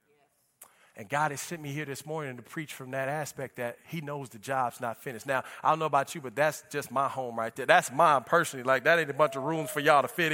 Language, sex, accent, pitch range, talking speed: English, male, American, 145-200 Hz, 275 wpm